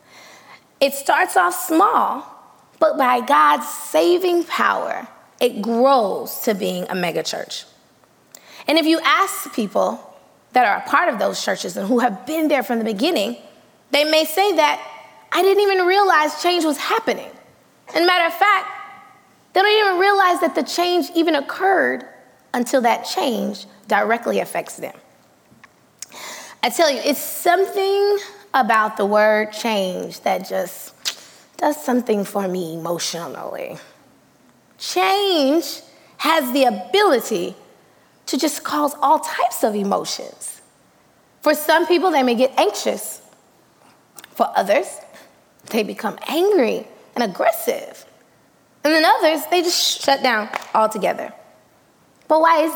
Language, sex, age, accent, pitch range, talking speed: English, female, 20-39, American, 245-355 Hz, 135 wpm